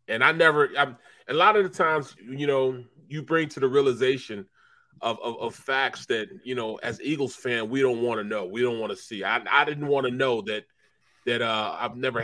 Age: 30-49